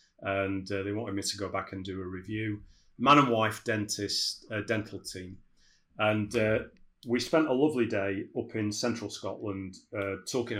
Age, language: 30-49, English